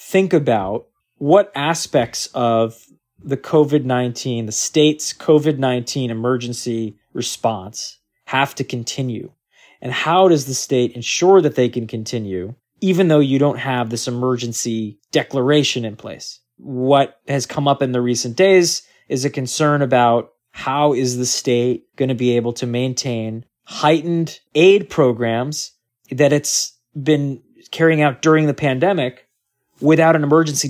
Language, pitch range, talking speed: English, 125-150 Hz, 135 wpm